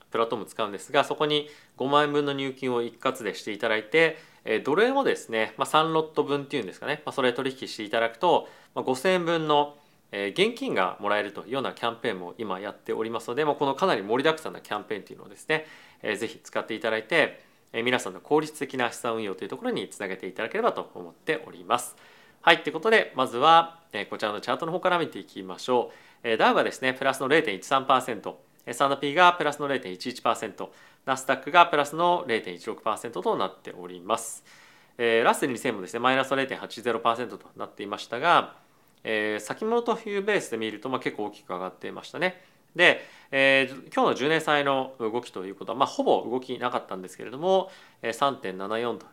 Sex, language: male, Japanese